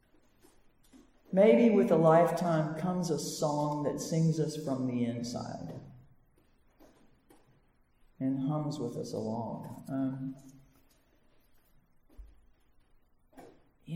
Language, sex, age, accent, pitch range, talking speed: English, female, 60-79, American, 150-200 Hz, 85 wpm